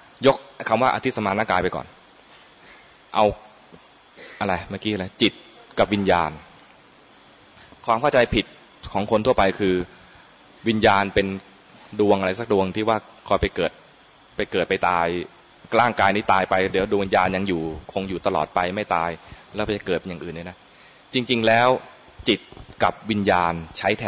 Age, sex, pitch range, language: 20-39, male, 90-110 Hz, English